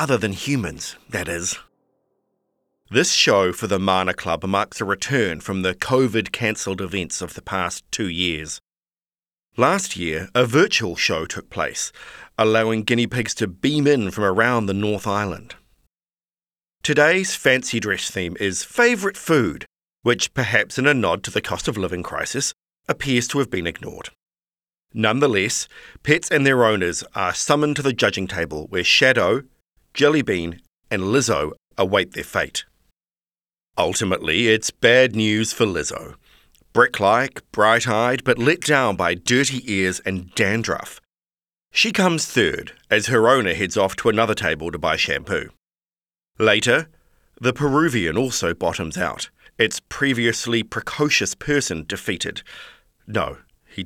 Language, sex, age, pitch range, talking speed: English, male, 40-59, 95-135 Hz, 140 wpm